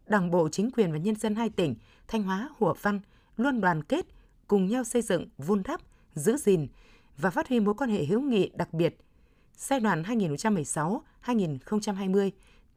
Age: 20-39